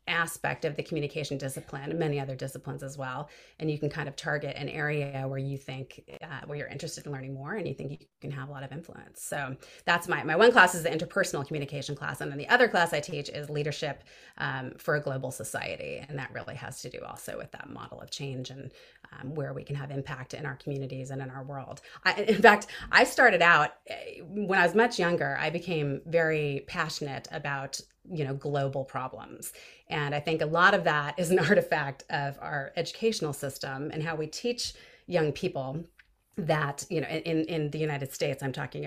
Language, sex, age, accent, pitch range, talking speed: English, female, 30-49, American, 140-165 Hz, 215 wpm